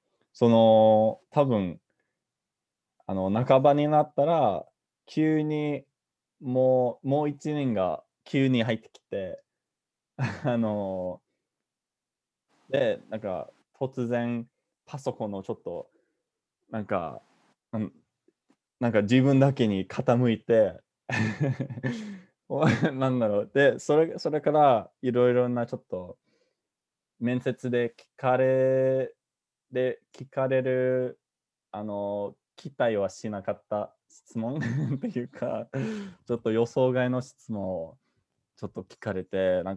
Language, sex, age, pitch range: Japanese, male, 20-39, 110-135 Hz